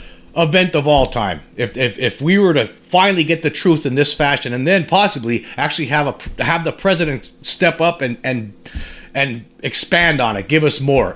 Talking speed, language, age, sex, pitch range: 200 wpm, English, 40-59, male, 125-165 Hz